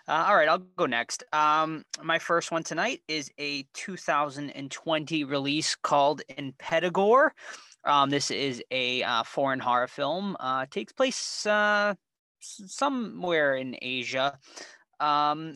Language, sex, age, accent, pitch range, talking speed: English, male, 20-39, American, 130-175 Hz, 130 wpm